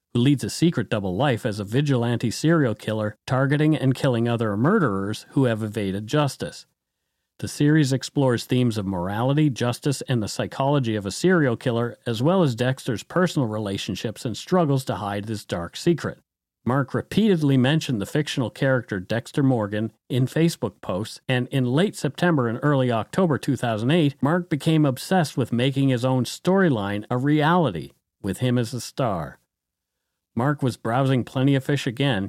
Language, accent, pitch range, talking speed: English, American, 115-145 Hz, 165 wpm